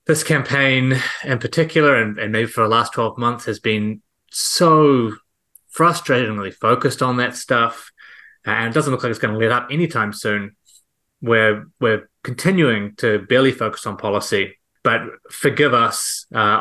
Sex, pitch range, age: male, 105-135 Hz, 20-39